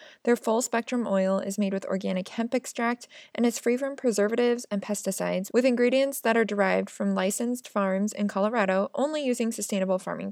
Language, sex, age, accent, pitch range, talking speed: English, female, 20-39, American, 200-245 Hz, 175 wpm